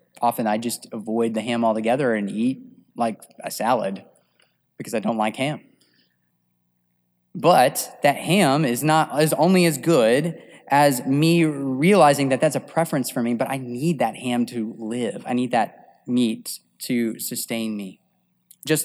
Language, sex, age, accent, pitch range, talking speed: English, male, 20-39, American, 100-155 Hz, 160 wpm